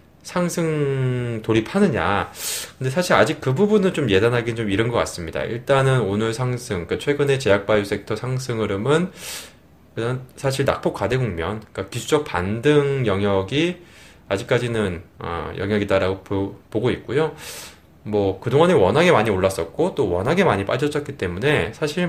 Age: 20-39